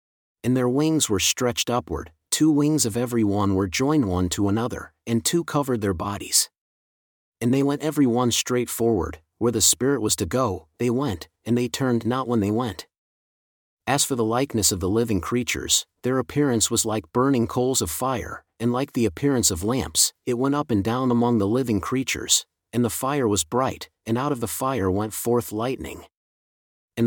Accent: American